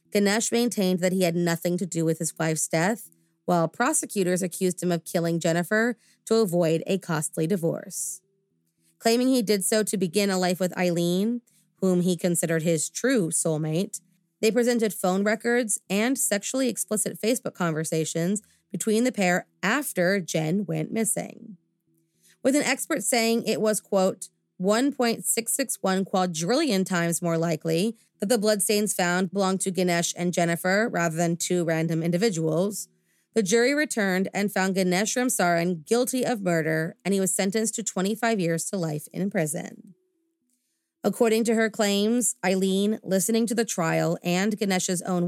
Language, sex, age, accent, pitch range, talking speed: English, female, 30-49, American, 175-225 Hz, 150 wpm